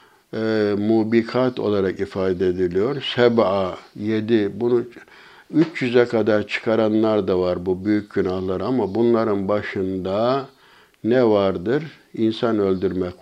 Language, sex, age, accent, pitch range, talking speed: Turkish, male, 60-79, native, 105-120 Hz, 105 wpm